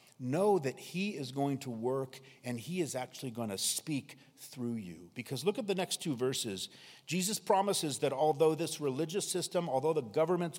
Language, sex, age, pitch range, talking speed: English, male, 50-69, 120-165 Hz, 185 wpm